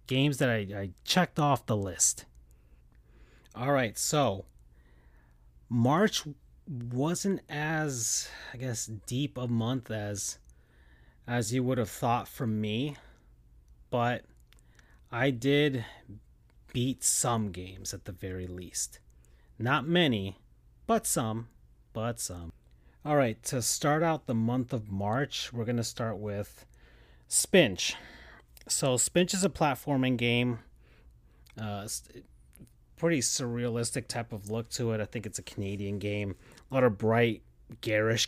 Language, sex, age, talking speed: English, male, 30-49, 125 wpm